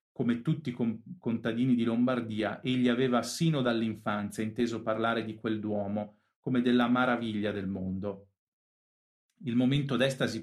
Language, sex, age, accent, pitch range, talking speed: Italian, male, 40-59, native, 110-130 Hz, 130 wpm